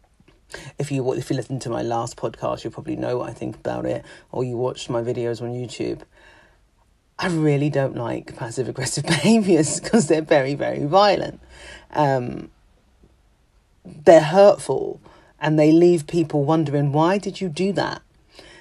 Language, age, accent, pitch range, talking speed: English, 30-49, British, 120-160 Hz, 170 wpm